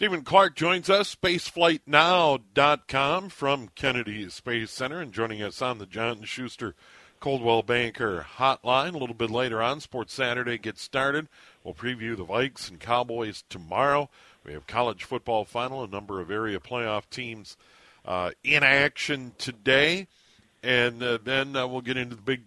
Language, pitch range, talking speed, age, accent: English, 115-140 Hz, 155 wpm, 50-69, American